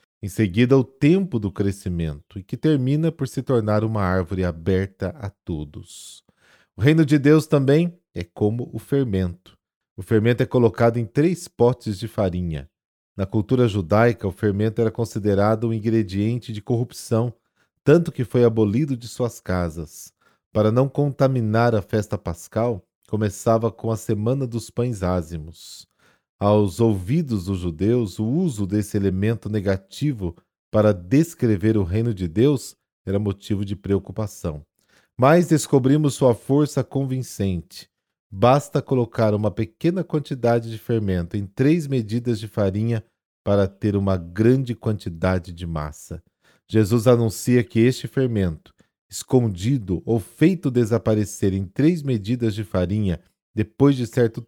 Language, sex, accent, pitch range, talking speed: Portuguese, male, Brazilian, 100-125 Hz, 140 wpm